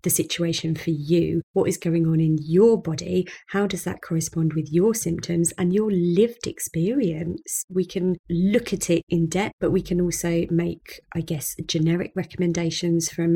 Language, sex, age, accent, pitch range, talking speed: English, female, 20-39, British, 165-180 Hz, 175 wpm